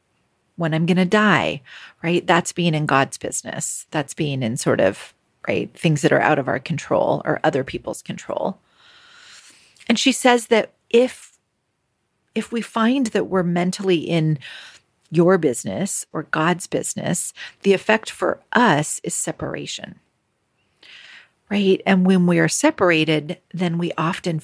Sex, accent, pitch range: female, American, 160-205 Hz